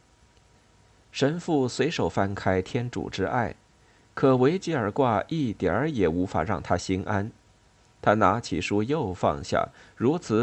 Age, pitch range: 50-69, 95-125 Hz